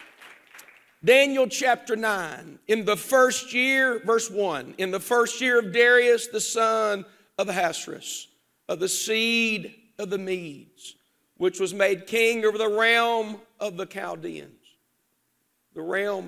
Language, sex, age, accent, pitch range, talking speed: English, male, 50-69, American, 175-225 Hz, 135 wpm